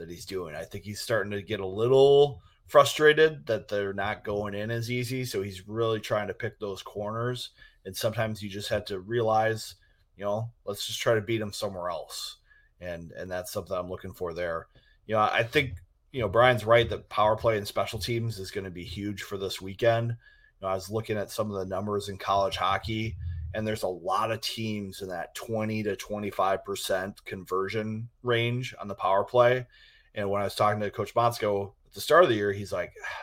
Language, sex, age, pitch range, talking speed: English, male, 30-49, 100-115 Hz, 215 wpm